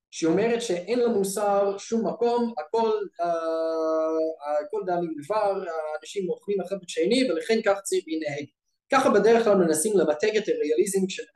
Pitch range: 155-225 Hz